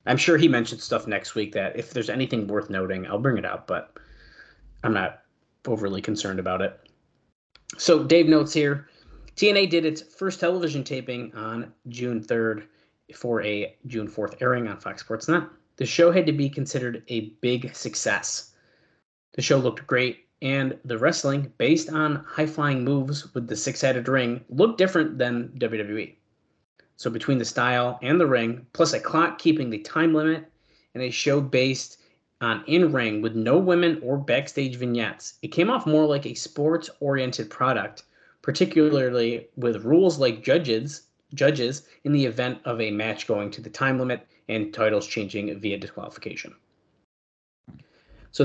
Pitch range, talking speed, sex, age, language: 115-155 Hz, 160 wpm, male, 30-49, English